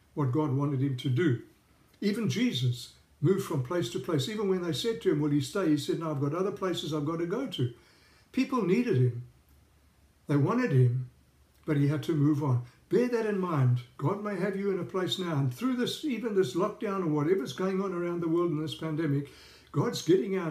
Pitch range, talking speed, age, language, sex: 140-190 Hz, 225 wpm, 60-79, English, male